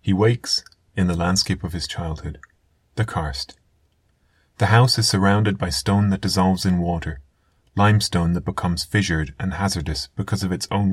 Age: 30-49